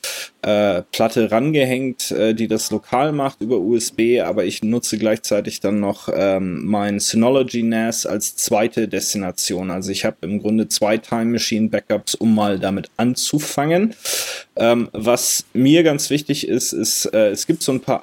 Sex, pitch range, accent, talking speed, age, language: male, 105-120 Hz, German, 165 wpm, 20-39, German